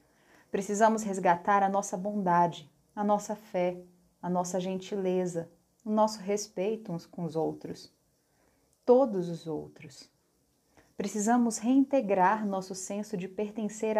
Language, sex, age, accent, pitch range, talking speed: Portuguese, female, 30-49, Brazilian, 175-225 Hz, 115 wpm